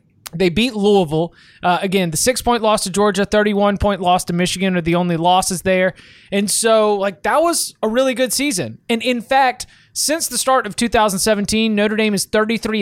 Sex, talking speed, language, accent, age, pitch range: male, 195 wpm, English, American, 20-39, 185-220 Hz